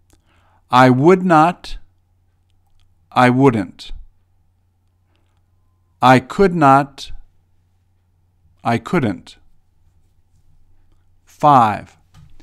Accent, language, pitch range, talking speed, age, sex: American, English, 90-135 Hz, 55 wpm, 50-69, male